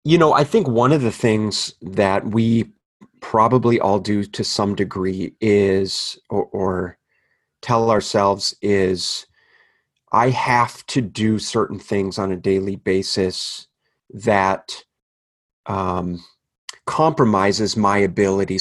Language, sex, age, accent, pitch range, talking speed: English, male, 30-49, American, 95-110 Hz, 120 wpm